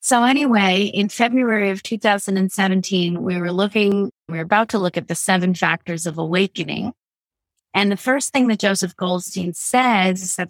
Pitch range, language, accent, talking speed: 175-215 Hz, English, American, 165 wpm